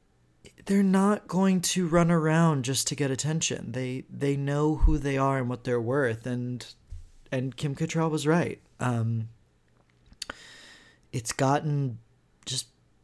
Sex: male